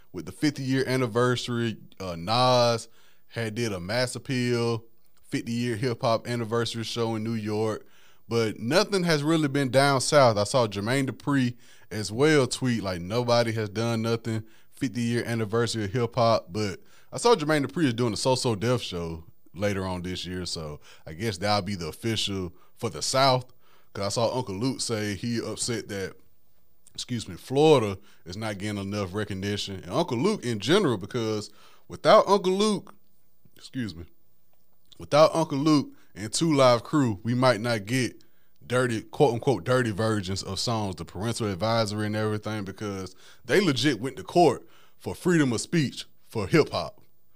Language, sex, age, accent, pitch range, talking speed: English, male, 20-39, American, 105-130 Hz, 165 wpm